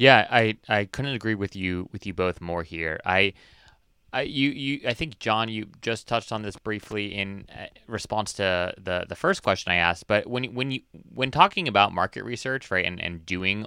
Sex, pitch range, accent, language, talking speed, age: male, 90-120 Hz, American, English, 205 wpm, 30-49